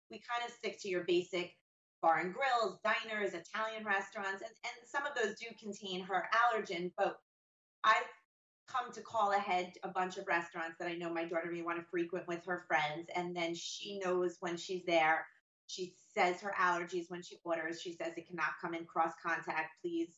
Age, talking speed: 30-49, 200 wpm